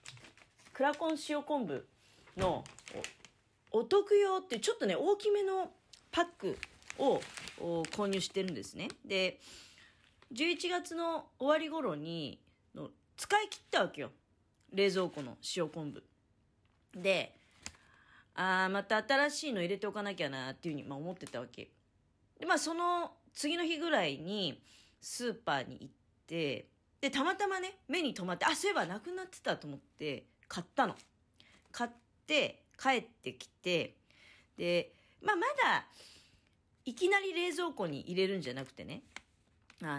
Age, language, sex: 40-59, Japanese, female